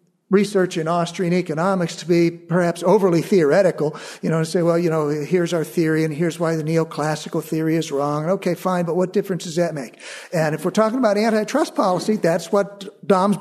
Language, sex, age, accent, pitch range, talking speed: English, male, 50-69, American, 170-210 Hz, 205 wpm